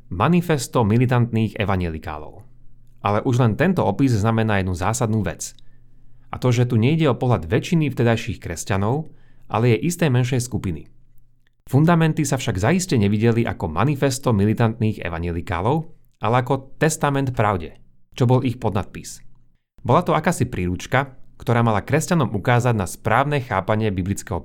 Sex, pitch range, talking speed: male, 105-130 Hz, 135 wpm